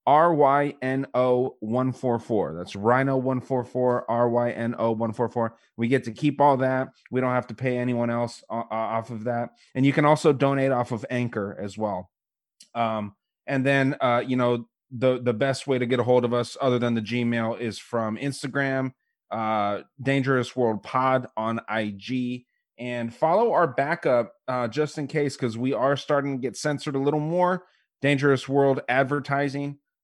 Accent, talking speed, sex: American, 160 wpm, male